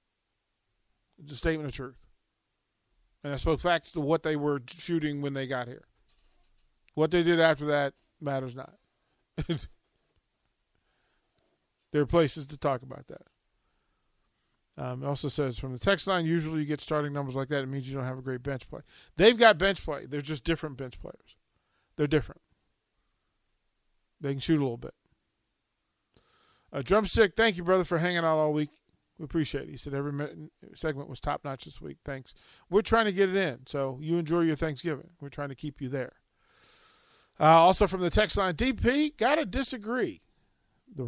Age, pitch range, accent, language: 40-59, 135-175 Hz, American, English